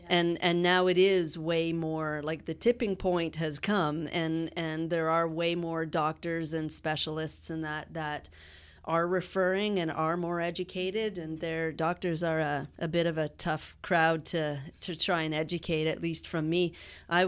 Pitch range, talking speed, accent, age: 160-180 Hz, 180 wpm, American, 30-49